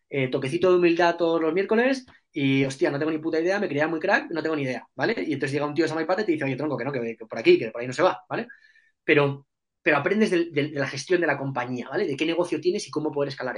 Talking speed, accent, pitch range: 300 wpm, Spanish, 140-180 Hz